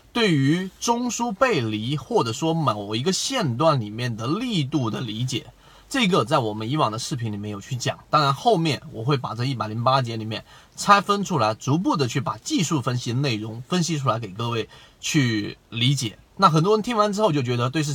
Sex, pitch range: male, 115-165 Hz